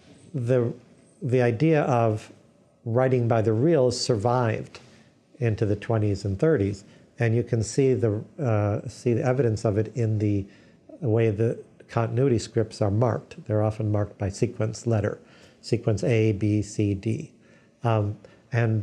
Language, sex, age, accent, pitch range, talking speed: English, male, 50-69, American, 110-120 Hz, 145 wpm